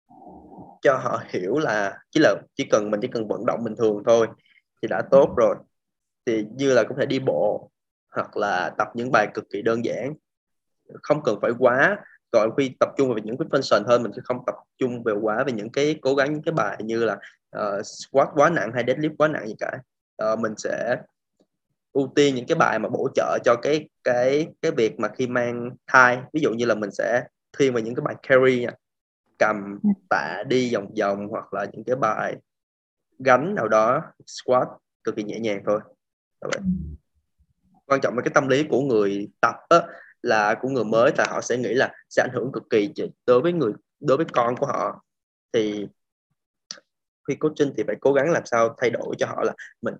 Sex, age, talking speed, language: male, 20-39, 210 wpm, Vietnamese